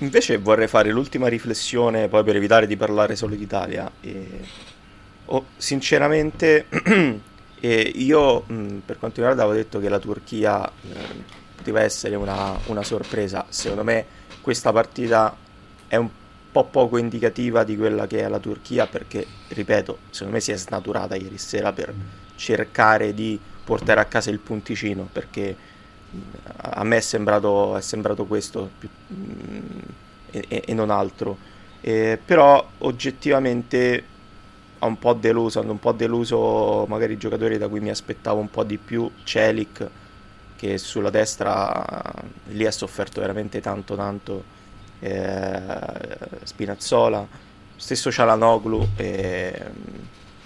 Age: 30-49